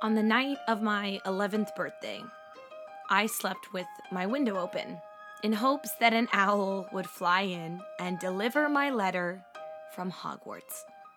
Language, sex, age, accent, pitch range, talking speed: English, female, 20-39, American, 195-260 Hz, 145 wpm